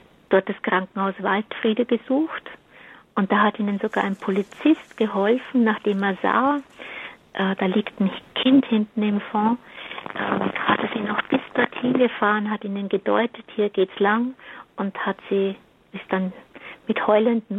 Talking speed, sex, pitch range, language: 150 wpm, female, 200-225 Hz, German